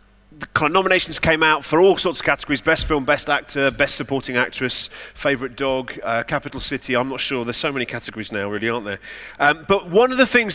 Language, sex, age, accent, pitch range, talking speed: English, male, 30-49, British, 135-195 Hz, 215 wpm